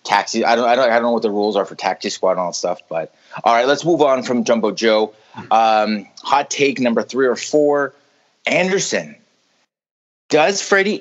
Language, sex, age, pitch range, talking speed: English, male, 30-49, 120-165 Hz, 205 wpm